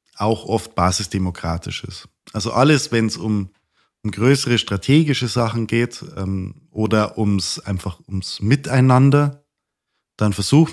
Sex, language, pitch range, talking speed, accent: male, German, 105-135 Hz, 125 wpm, German